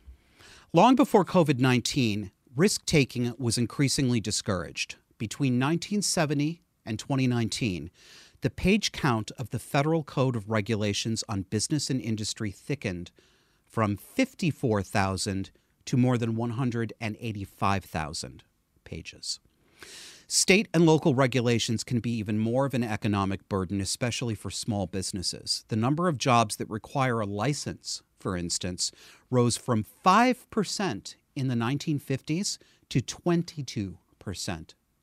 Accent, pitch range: American, 105-145 Hz